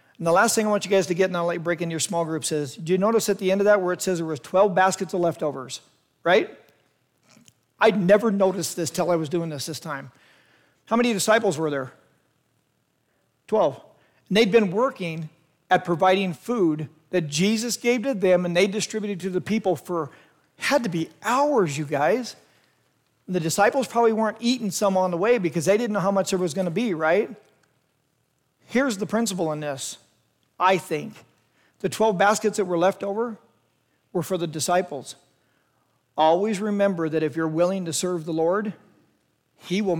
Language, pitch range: English, 160-200 Hz